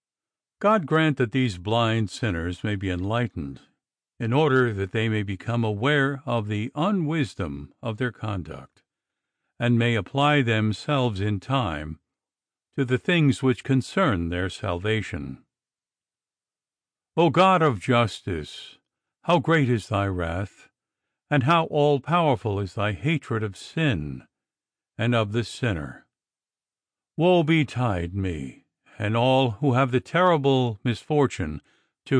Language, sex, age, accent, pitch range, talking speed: English, male, 60-79, American, 105-145 Hz, 125 wpm